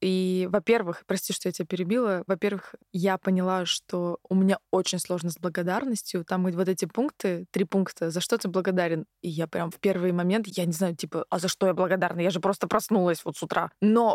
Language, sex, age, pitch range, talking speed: Russian, female, 20-39, 185-210 Hz, 210 wpm